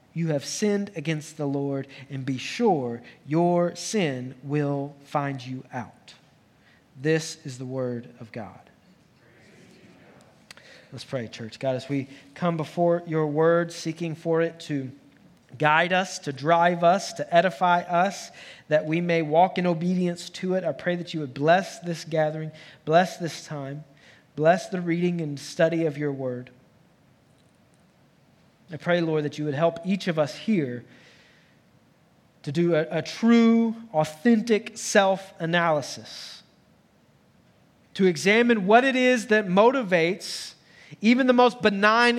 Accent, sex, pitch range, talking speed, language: American, male, 150-190 Hz, 140 wpm, English